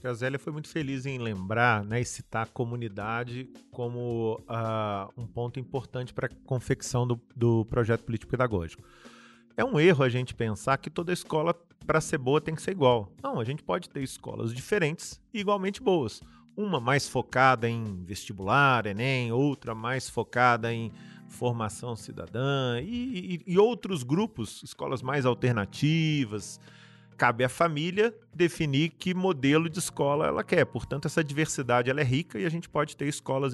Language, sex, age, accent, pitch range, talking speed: Portuguese, male, 40-59, Brazilian, 115-155 Hz, 165 wpm